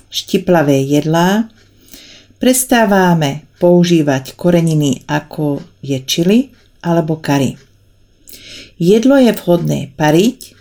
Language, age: Slovak, 40-59